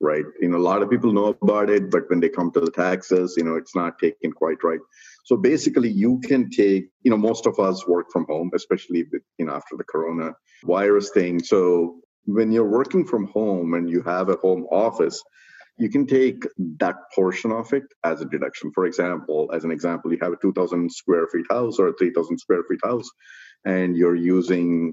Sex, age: male, 50-69